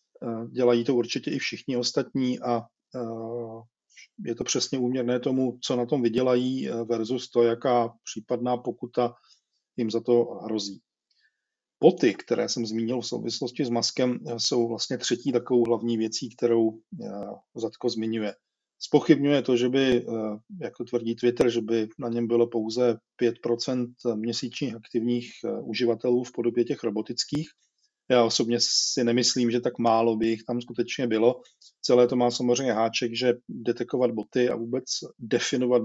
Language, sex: Czech, male